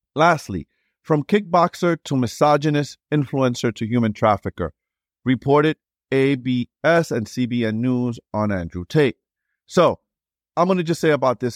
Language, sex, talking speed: English, male, 130 wpm